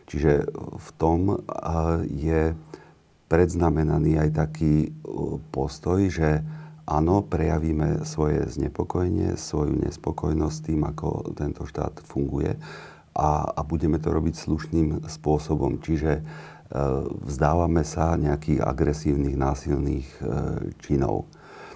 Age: 40-59